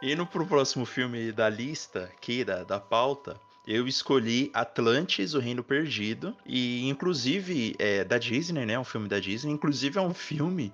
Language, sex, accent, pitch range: Portuguese, male, Brazilian, 105-140 Hz